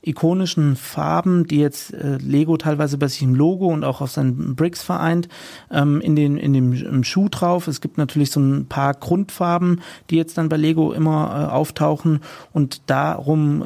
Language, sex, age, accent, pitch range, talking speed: German, male, 40-59, German, 145-165 Hz, 175 wpm